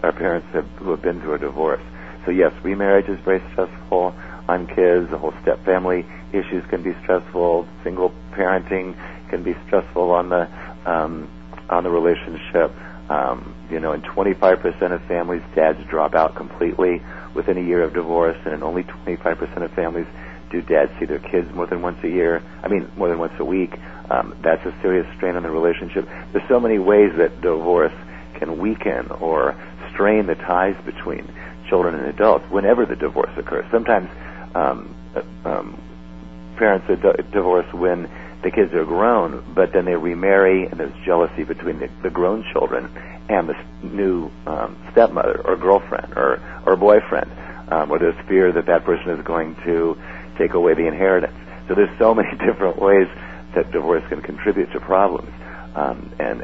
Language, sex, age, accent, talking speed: English, male, 50-69, American, 180 wpm